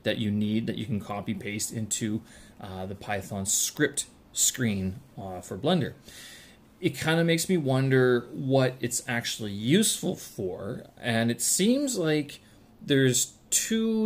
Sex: male